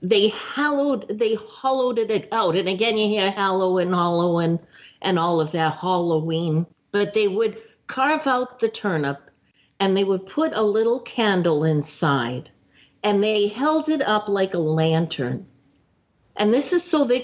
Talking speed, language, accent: 165 wpm, English, American